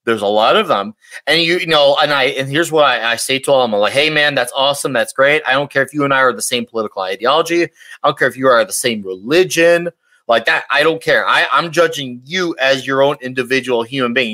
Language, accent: English, American